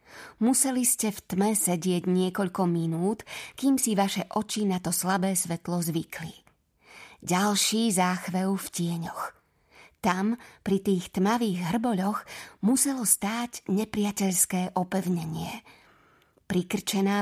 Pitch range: 180-210 Hz